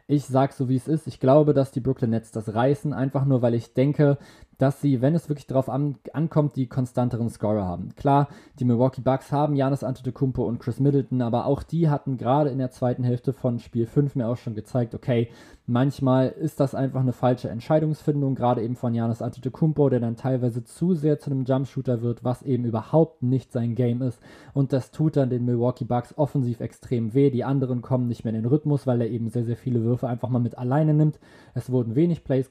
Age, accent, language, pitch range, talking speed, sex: 20-39, German, German, 120-140 Hz, 220 wpm, male